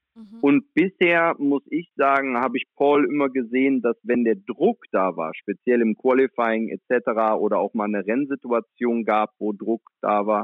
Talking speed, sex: 170 wpm, male